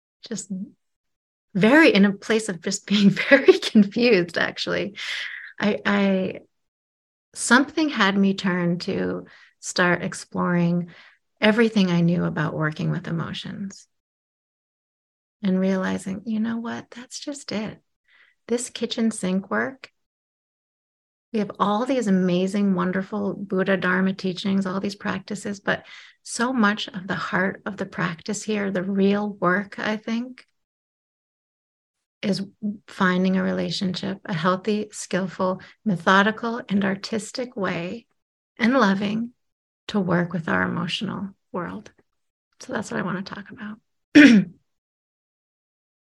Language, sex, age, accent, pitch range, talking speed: English, female, 30-49, American, 185-215 Hz, 120 wpm